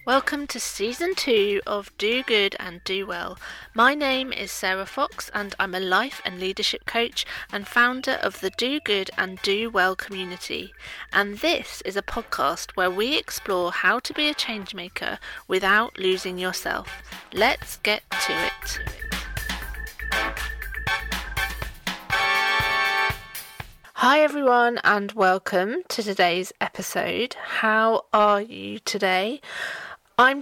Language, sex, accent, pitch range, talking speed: English, female, British, 190-245 Hz, 130 wpm